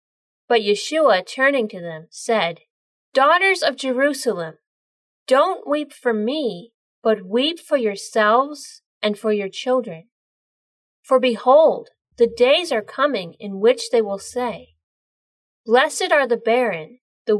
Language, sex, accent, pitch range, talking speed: English, female, American, 200-290 Hz, 130 wpm